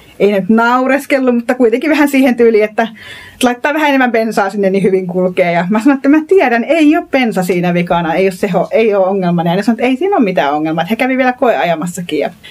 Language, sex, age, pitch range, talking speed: Finnish, female, 30-49, 185-255 Hz, 225 wpm